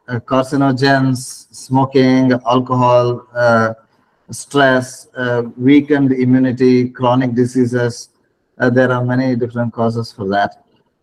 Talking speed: 105 wpm